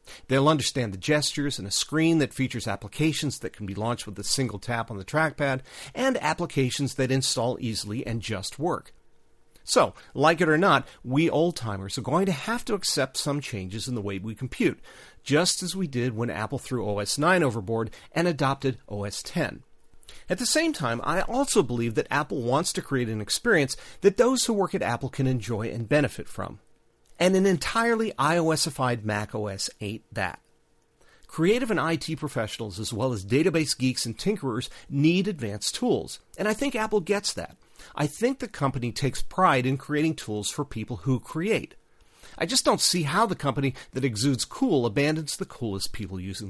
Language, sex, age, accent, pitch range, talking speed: English, male, 40-59, American, 115-165 Hz, 185 wpm